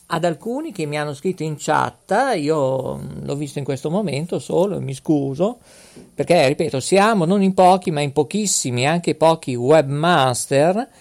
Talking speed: 165 wpm